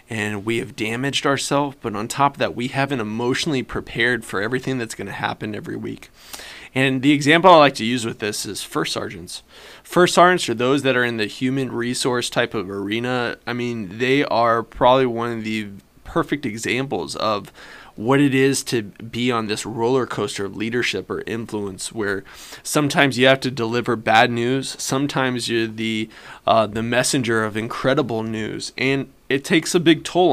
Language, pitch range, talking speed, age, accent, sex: English, 110-135 Hz, 185 wpm, 20-39, American, male